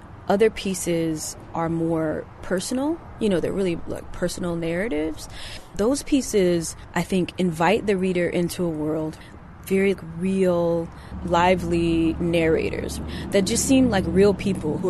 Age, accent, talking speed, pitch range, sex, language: 20-39, American, 135 wpm, 160-185 Hz, female, English